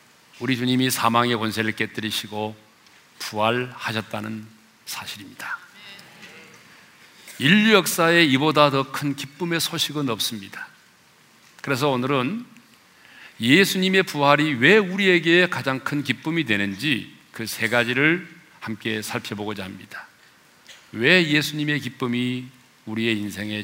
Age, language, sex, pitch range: 40-59, Korean, male, 115-155 Hz